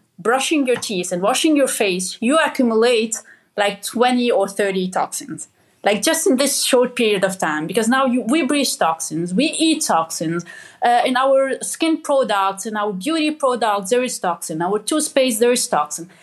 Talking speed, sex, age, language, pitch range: 180 wpm, female, 30-49, German, 205-280 Hz